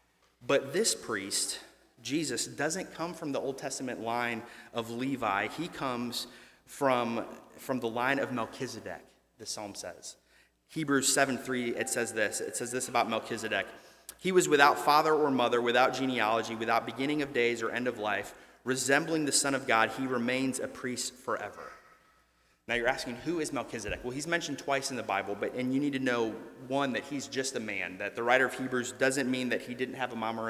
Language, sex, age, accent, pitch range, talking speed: English, male, 30-49, American, 120-140 Hz, 195 wpm